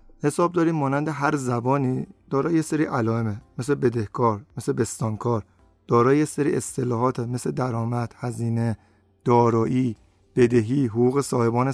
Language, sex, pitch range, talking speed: Persian, male, 115-140 Hz, 110 wpm